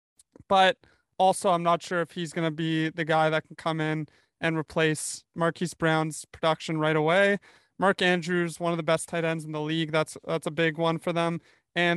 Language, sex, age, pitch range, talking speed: English, male, 20-39, 165-185 Hz, 210 wpm